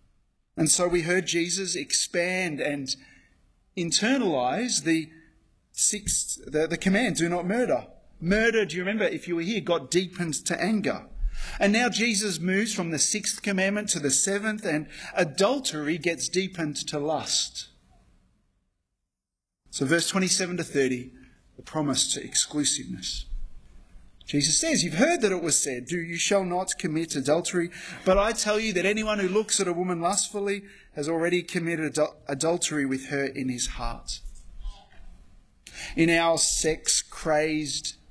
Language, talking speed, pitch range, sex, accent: English, 145 wpm, 135-185 Hz, male, Australian